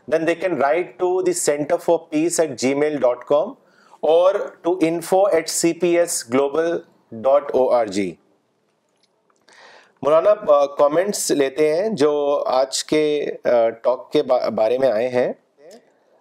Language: Urdu